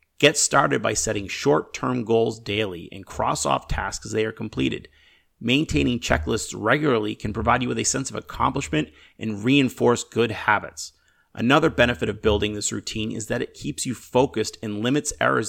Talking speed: 170 wpm